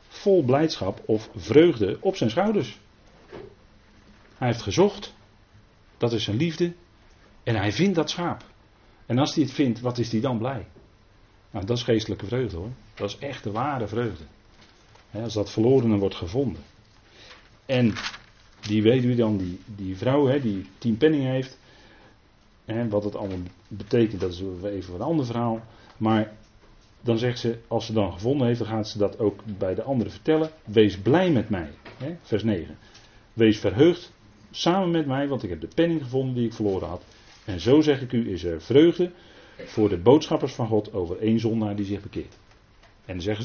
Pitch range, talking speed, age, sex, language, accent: 100-120 Hz, 180 wpm, 40-59, male, Dutch, Dutch